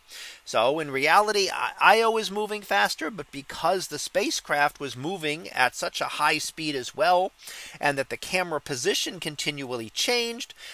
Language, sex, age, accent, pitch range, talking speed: English, male, 40-59, American, 145-195 Hz, 150 wpm